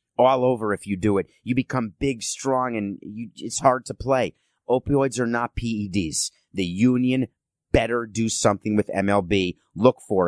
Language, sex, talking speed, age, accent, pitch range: English, male, 165 wpm, 30-49, American, 100-130 Hz